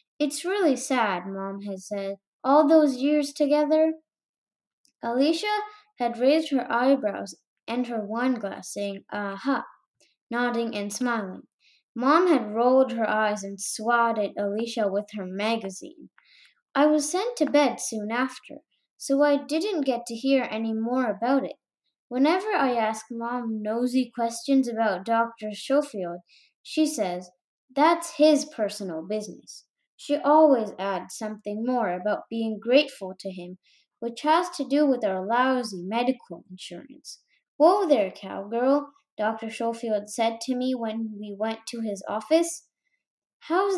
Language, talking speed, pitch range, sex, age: English, 140 wpm, 210-290 Hz, female, 10-29